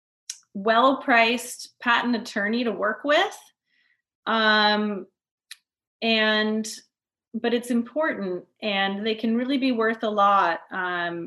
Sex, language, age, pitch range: female, English, 30-49, 180-210 Hz